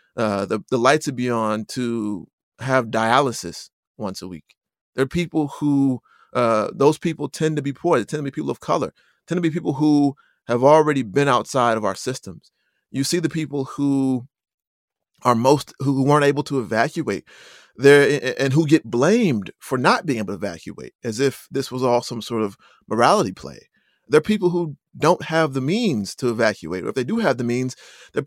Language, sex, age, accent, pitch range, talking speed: English, male, 30-49, American, 115-150 Hz, 195 wpm